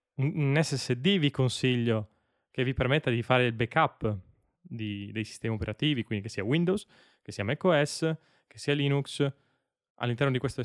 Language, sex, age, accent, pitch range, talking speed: Italian, male, 20-39, native, 115-145 Hz, 160 wpm